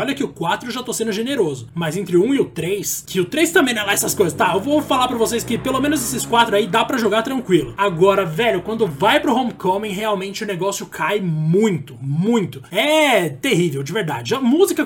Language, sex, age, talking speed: Portuguese, male, 20-39, 240 wpm